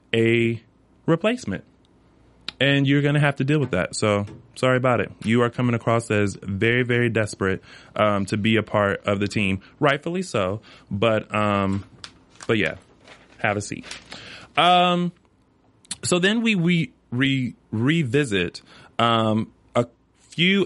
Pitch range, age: 105-145 Hz, 30-49